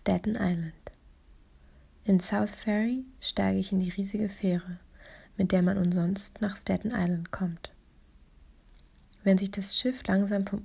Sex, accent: female, German